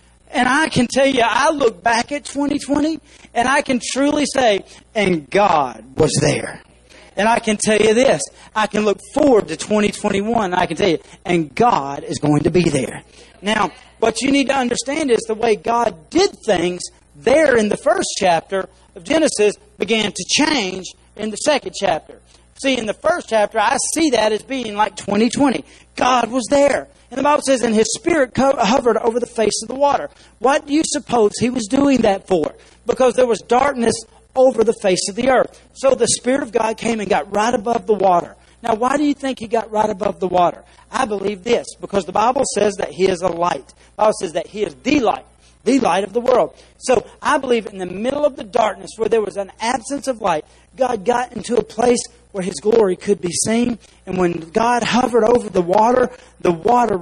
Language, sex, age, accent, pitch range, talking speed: English, male, 40-59, American, 200-255 Hz, 215 wpm